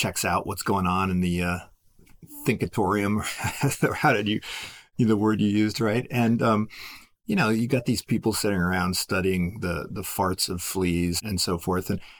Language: English